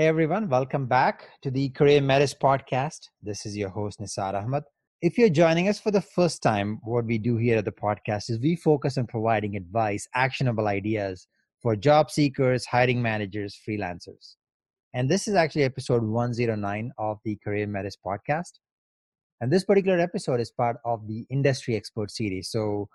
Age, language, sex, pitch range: 30-49, English, male, 110-140 Hz